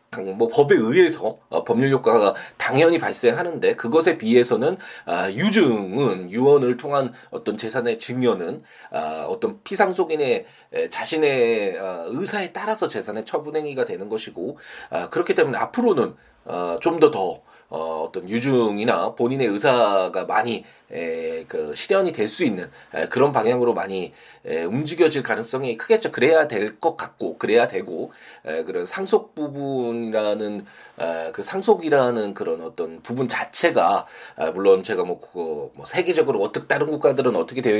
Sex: male